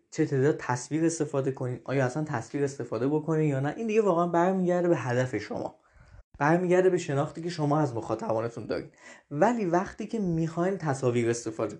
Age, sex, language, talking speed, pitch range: 20-39, male, Persian, 165 wpm, 130-175 Hz